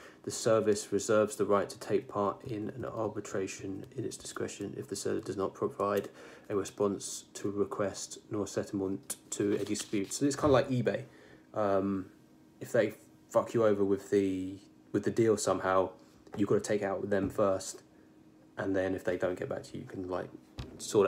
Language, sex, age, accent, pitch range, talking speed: English, male, 20-39, British, 95-125 Hz, 200 wpm